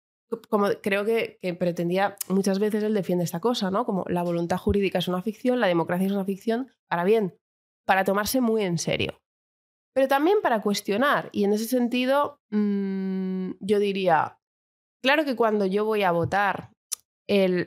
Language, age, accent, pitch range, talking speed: Spanish, 20-39, Spanish, 180-215 Hz, 170 wpm